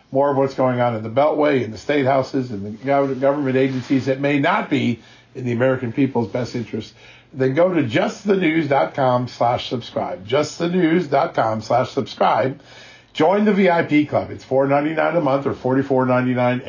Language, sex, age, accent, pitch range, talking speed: English, male, 50-69, American, 125-150 Hz, 175 wpm